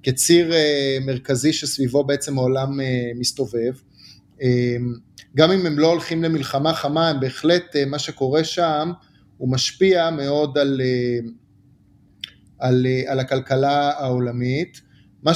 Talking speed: 105 wpm